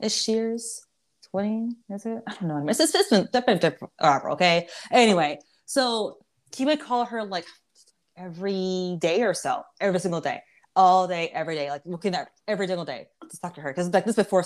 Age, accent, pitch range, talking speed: 20-39, American, 170-220 Hz, 185 wpm